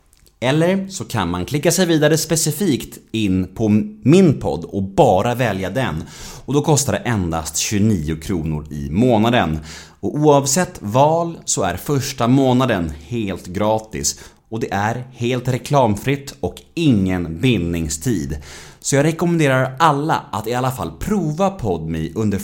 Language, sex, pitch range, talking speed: Swedish, male, 85-135 Hz, 140 wpm